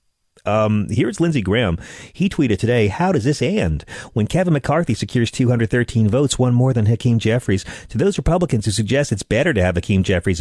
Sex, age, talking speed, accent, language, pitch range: male, 40-59, 190 wpm, American, English, 100-140 Hz